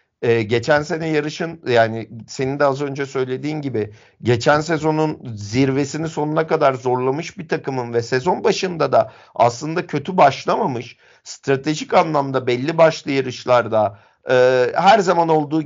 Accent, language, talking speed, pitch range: native, Turkish, 135 wpm, 130-160 Hz